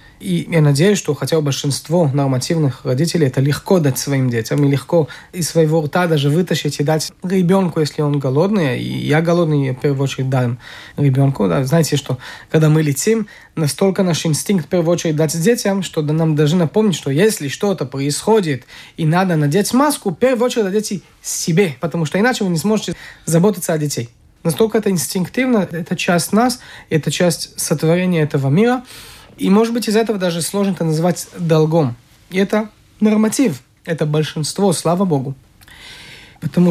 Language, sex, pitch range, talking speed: Russian, male, 145-190 Hz, 170 wpm